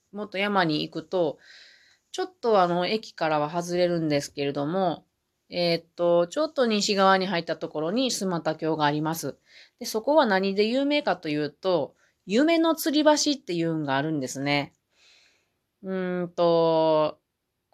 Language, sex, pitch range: Japanese, female, 160-245 Hz